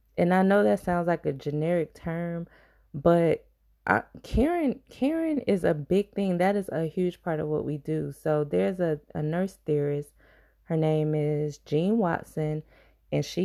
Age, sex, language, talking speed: 20-39, female, English, 165 wpm